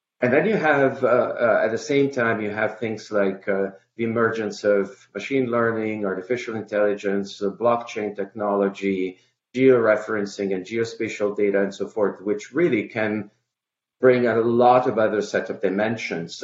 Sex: male